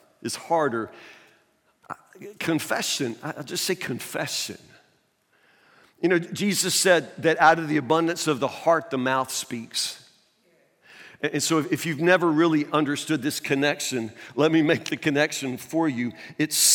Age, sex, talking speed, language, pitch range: 50-69, male, 140 wpm, English, 135-165 Hz